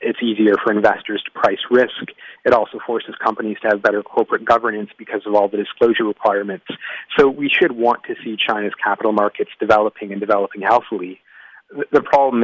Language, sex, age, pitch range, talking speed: English, male, 30-49, 100-115 Hz, 180 wpm